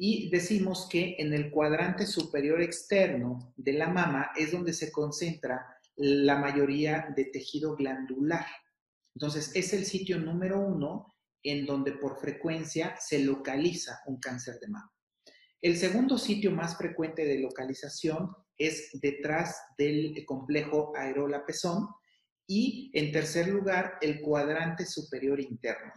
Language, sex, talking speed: Spanish, male, 130 wpm